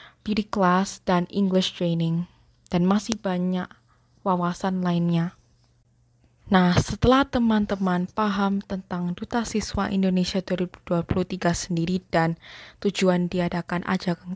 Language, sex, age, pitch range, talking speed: Indonesian, female, 20-39, 180-210 Hz, 100 wpm